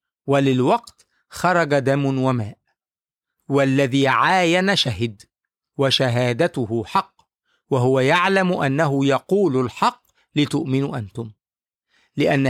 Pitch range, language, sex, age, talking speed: 135-200 Hz, English, male, 50-69, 80 wpm